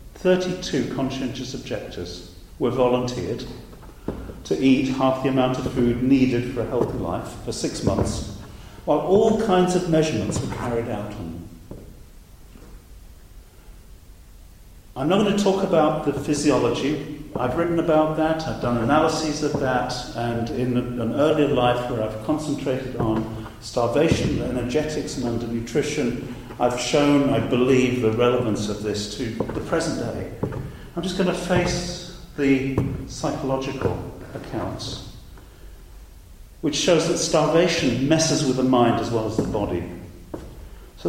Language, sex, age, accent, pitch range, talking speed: English, male, 50-69, British, 115-155 Hz, 135 wpm